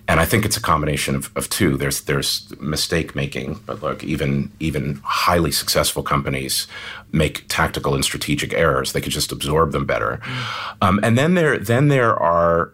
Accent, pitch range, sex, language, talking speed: American, 75-100 Hz, male, English, 170 wpm